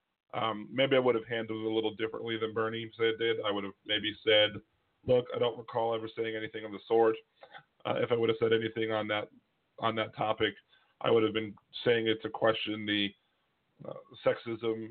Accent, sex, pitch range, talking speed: American, male, 105-120 Hz, 210 wpm